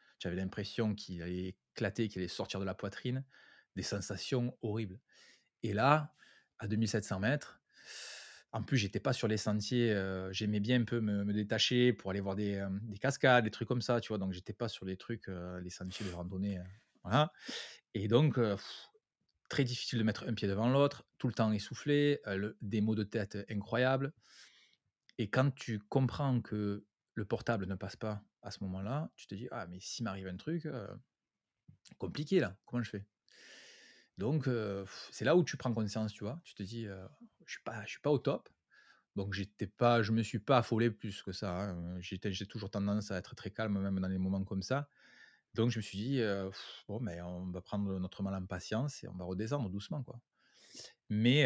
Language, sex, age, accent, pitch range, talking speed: French, male, 20-39, French, 100-120 Hz, 215 wpm